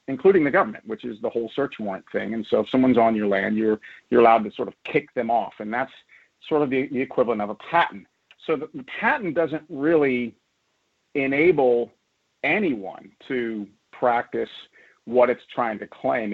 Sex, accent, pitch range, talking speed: male, American, 110-130 Hz, 185 wpm